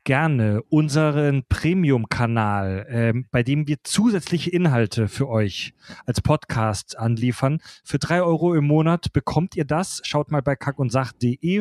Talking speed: 130 wpm